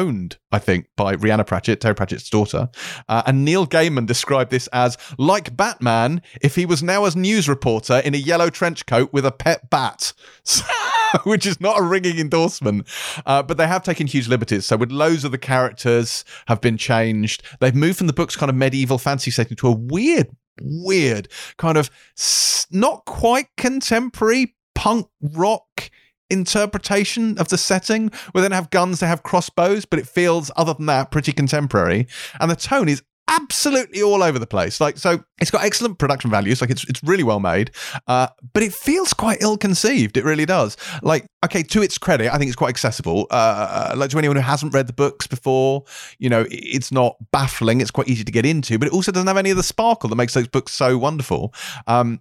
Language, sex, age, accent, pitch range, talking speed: English, male, 30-49, British, 125-180 Hz, 200 wpm